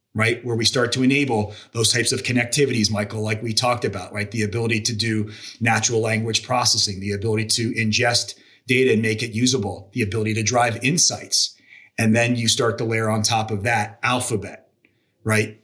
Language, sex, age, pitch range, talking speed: English, male, 30-49, 110-130 Hz, 190 wpm